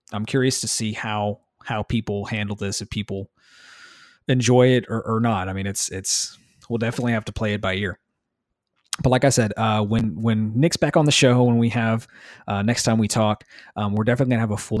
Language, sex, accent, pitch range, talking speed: English, male, American, 100-120 Hz, 225 wpm